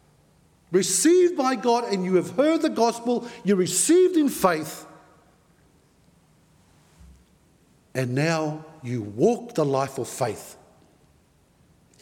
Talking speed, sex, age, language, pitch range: 110 wpm, male, 60-79, English, 135-185 Hz